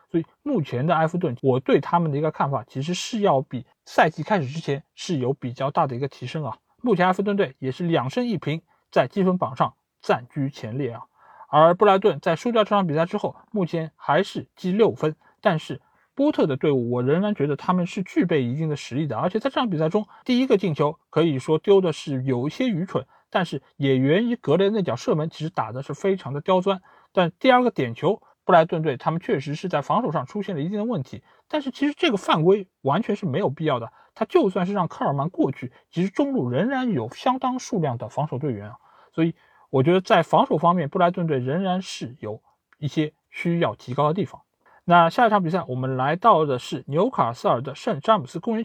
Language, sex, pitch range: Chinese, male, 140-200 Hz